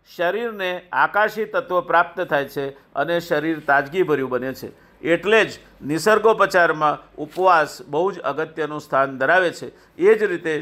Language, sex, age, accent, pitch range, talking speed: Gujarati, male, 50-69, native, 150-195 Hz, 105 wpm